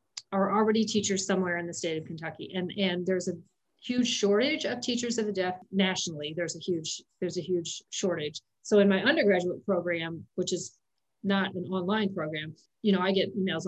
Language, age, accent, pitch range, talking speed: English, 40-59, American, 170-195 Hz, 195 wpm